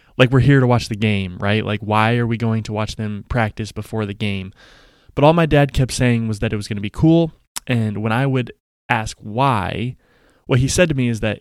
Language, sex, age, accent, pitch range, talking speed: English, male, 20-39, American, 110-130 Hz, 245 wpm